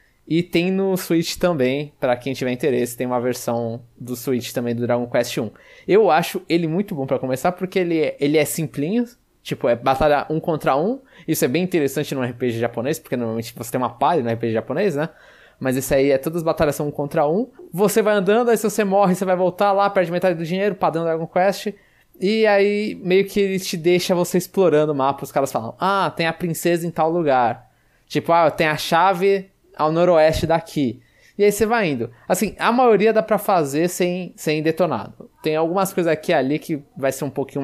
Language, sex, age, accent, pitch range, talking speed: Portuguese, male, 20-39, Brazilian, 135-190 Hz, 220 wpm